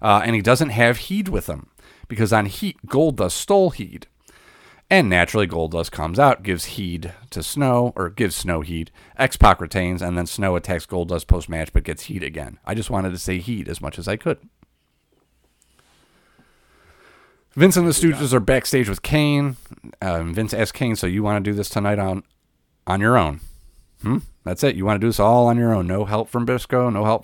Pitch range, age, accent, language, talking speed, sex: 85-115 Hz, 40-59, American, English, 210 wpm, male